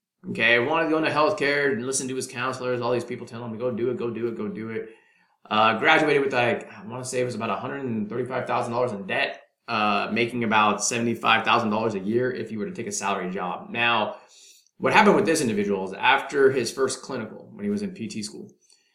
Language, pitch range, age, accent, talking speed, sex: English, 110-135 Hz, 20-39, American, 225 wpm, male